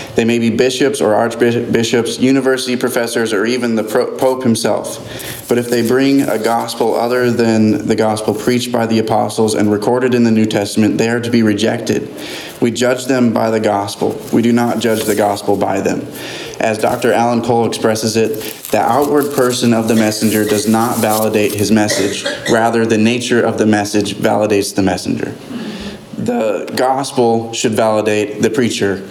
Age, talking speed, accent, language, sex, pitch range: 20-39, 175 wpm, American, English, male, 105-115 Hz